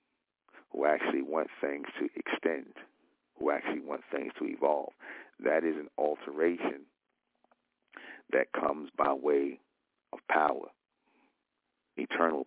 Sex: male